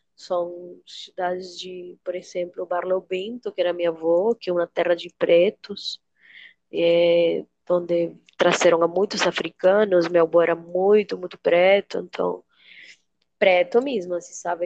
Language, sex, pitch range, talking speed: Portuguese, female, 175-205 Hz, 140 wpm